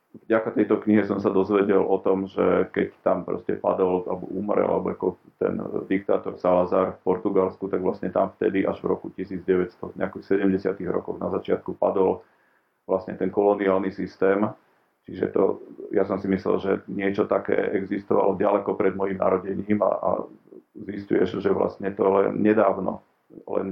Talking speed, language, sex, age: 155 wpm, Slovak, male, 40-59